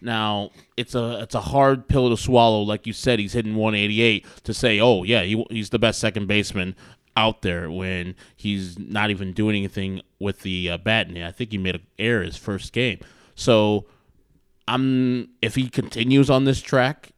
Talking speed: 200 wpm